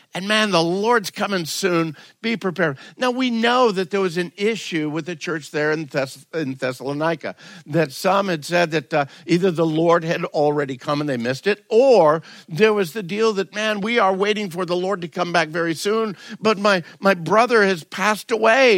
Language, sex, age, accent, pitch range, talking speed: English, male, 50-69, American, 155-200 Hz, 205 wpm